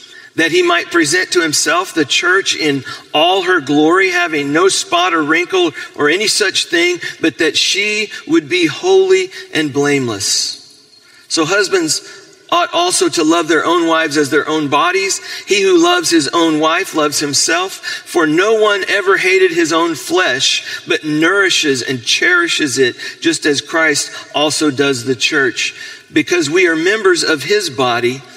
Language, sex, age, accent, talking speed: English, male, 40-59, American, 165 wpm